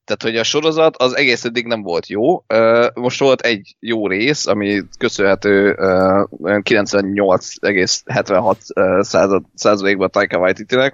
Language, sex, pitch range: Hungarian, male, 100-120 Hz